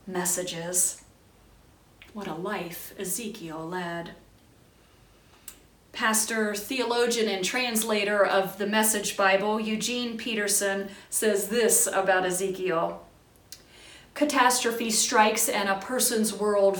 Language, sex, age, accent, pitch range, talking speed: English, female, 30-49, American, 190-230 Hz, 95 wpm